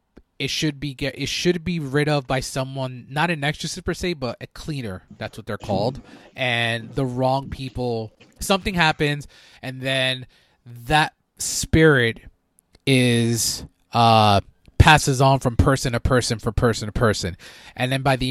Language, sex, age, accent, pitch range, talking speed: English, male, 20-39, American, 110-145 Hz, 160 wpm